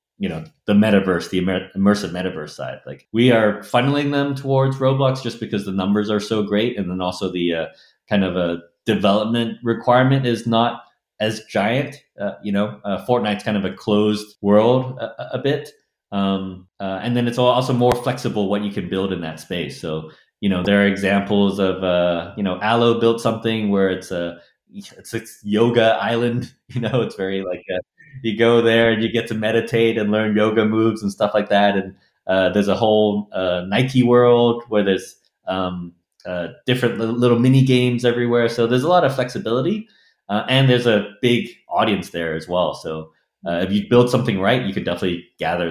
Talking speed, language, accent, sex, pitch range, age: 195 wpm, English, American, male, 95-120 Hz, 30-49